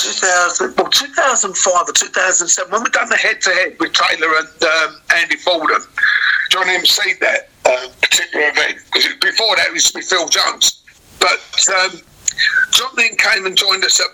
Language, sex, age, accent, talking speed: English, male, 50-69, British, 185 wpm